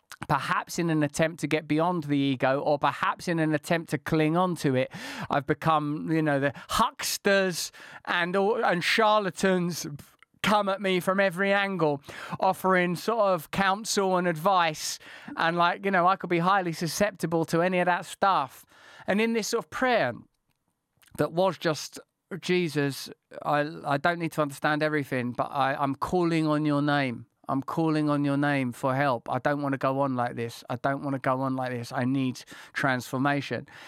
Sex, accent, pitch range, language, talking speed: male, British, 145-185 Hz, English, 180 wpm